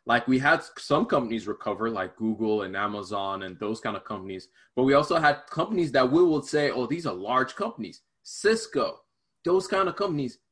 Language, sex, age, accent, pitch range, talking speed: English, male, 20-39, American, 110-150 Hz, 195 wpm